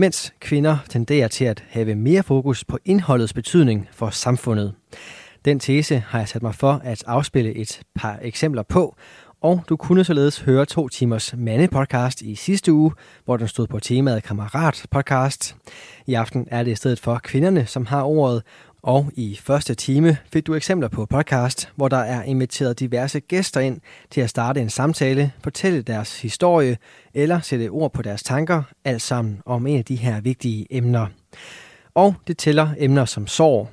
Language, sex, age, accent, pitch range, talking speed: Danish, male, 20-39, native, 115-150 Hz, 175 wpm